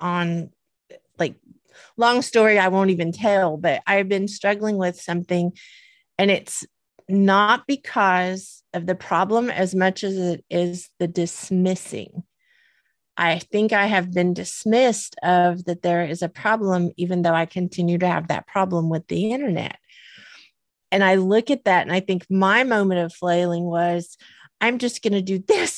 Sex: female